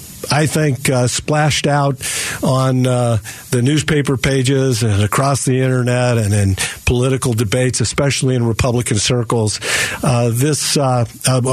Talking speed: 130 wpm